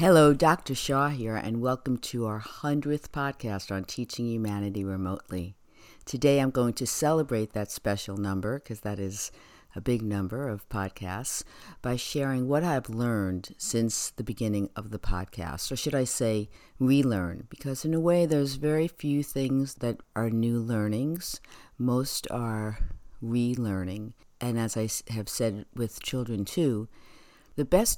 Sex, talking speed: female, 150 wpm